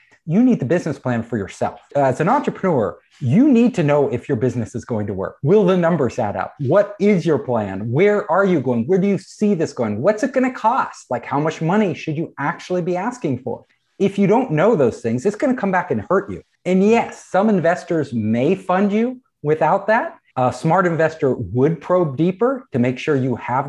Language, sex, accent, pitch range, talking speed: English, male, American, 125-190 Hz, 225 wpm